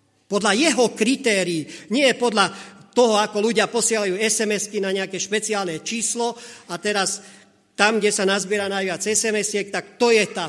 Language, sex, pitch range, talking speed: Slovak, male, 170-220 Hz, 155 wpm